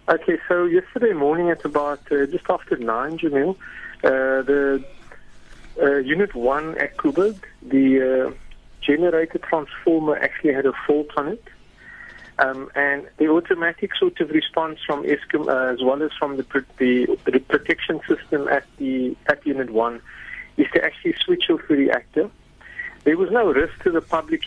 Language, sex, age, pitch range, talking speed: English, male, 50-69, 135-175 Hz, 170 wpm